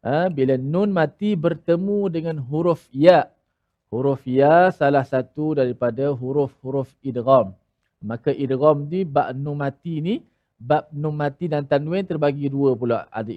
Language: Malayalam